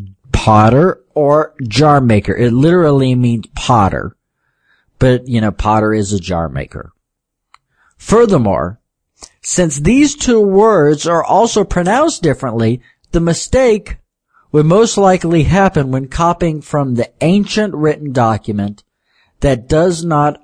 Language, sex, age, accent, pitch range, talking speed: English, male, 50-69, American, 115-175 Hz, 120 wpm